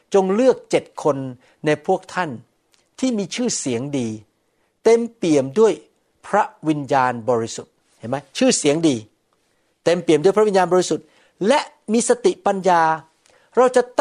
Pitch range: 135-190 Hz